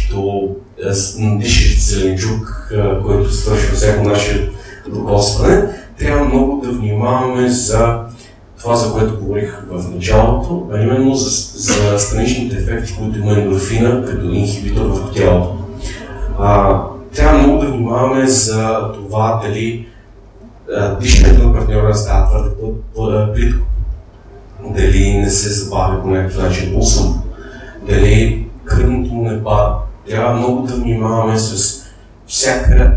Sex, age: male, 30-49